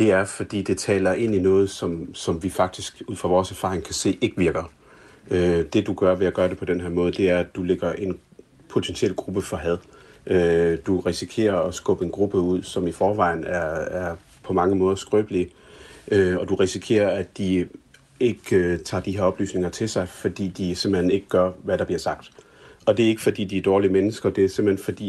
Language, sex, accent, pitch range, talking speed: Danish, male, native, 90-100 Hz, 220 wpm